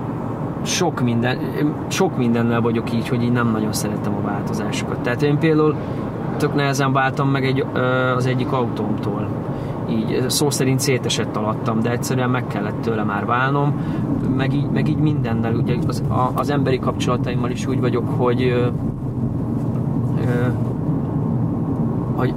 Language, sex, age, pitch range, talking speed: Hungarian, male, 30-49, 125-145 Hz, 135 wpm